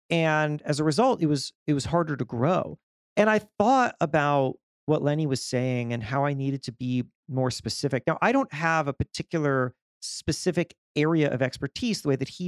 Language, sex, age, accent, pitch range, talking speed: English, male, 40-59, American, 130-170 Hz, 195 wpm